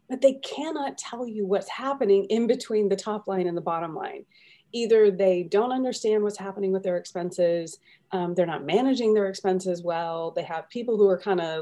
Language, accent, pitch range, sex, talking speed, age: English, American, 180-230 Hz, female, 200 wpm, 30-49